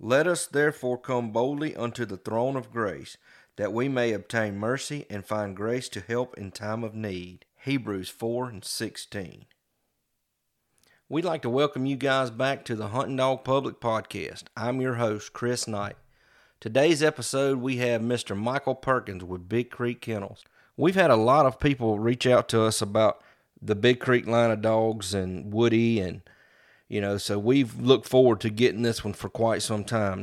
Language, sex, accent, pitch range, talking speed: English, male, American, 105-125 Hz, 180 wpm